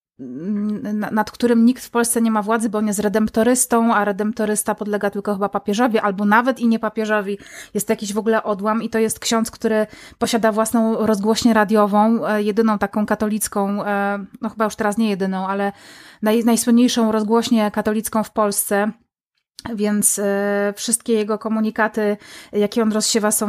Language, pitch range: German, 205-225 Hz